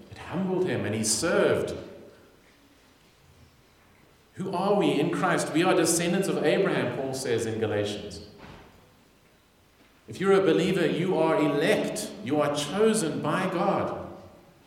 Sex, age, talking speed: male, 40-59, 125 wpm